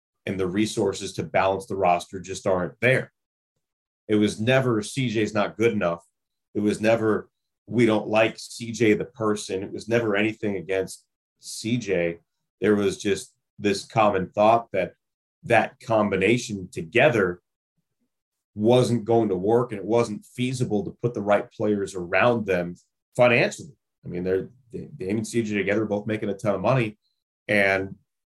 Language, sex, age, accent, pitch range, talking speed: English, male, 30-49, American, 95-120 Hz, 155 wpm